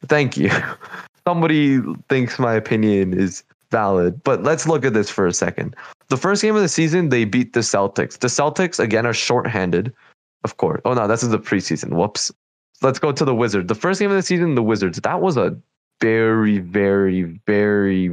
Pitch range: 100-135 Hz